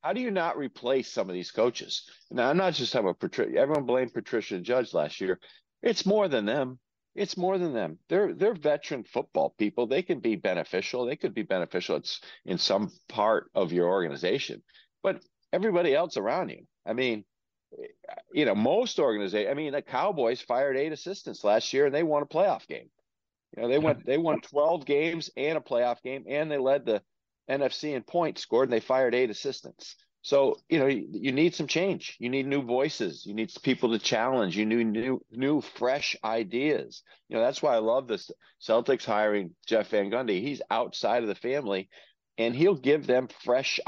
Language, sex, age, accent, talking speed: English, male, 50-69, American, 200 wpm